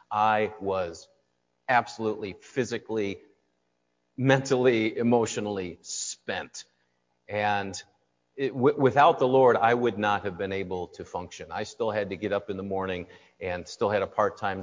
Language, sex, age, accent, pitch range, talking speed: English, male, 40-59, American, 85-120 Hz, 135 wpm